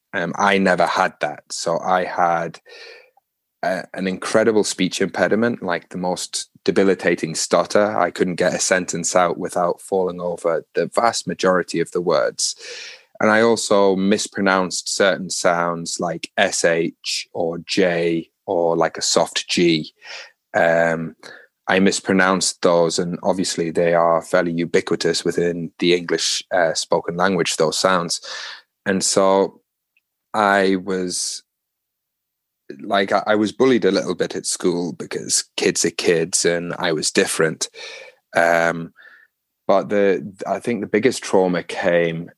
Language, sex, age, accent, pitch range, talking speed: English, male, 20-39, British, 85-95 Hz, 135 wpm